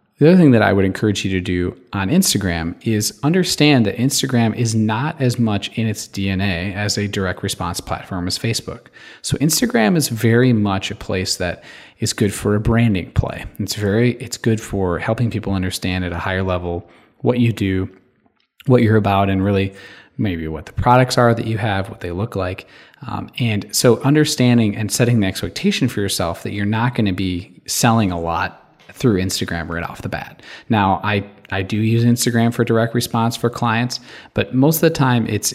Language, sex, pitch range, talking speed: English, male, 95-120 Hz, 200 wpm